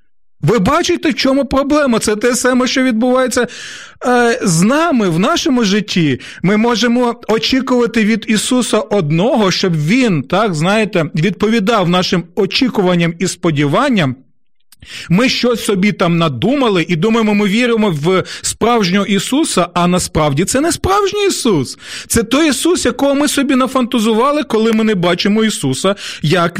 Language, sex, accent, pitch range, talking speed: Ukrainian, male, native, 180-245 Hz, 140 wpm